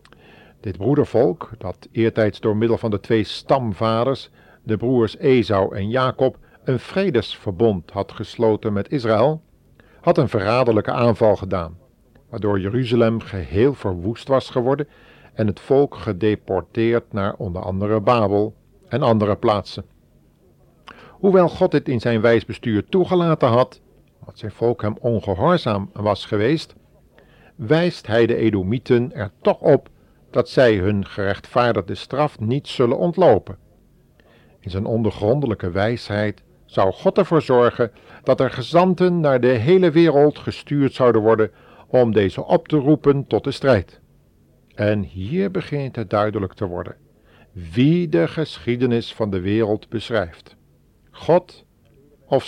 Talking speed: 130 wpm